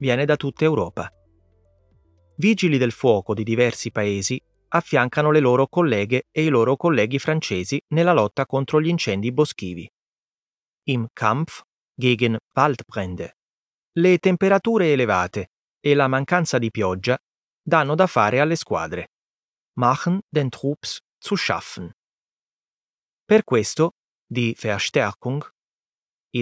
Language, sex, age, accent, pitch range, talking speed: Italian, male, 30-49, native, 115-165 Hz, 120 wpm